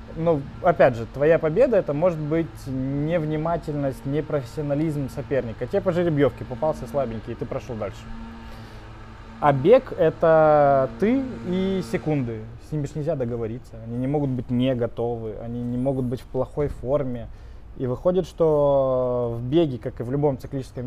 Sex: male